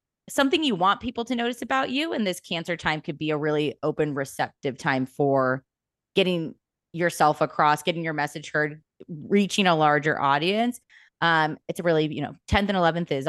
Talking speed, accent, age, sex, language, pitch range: 185 wpm, American, 20-39, female, English, 150-200 Hz